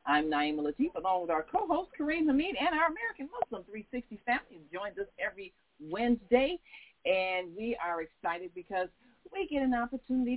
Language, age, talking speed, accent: English, 50-69, 160 wpm, American